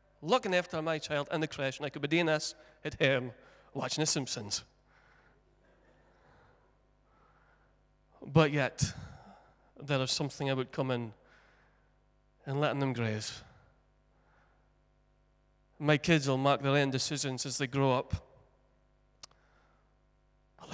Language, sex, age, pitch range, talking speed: English, male, 30-49, 135-160 Hz, 125 wpm